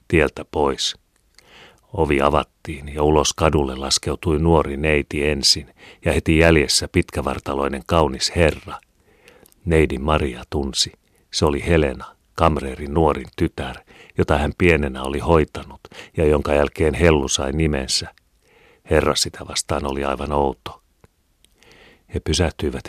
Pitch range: 70-85 Hz